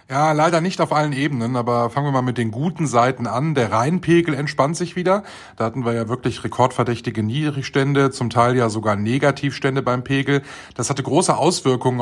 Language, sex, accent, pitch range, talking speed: German, male, German, 120-150 Hz, 190 wpm